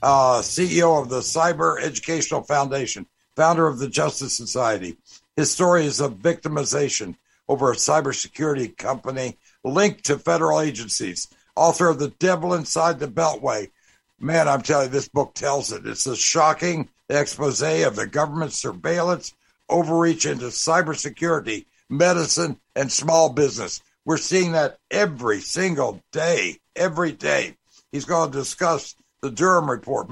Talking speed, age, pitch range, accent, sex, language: 140 wpm, 60-79, 140-170 Hz, American, male, English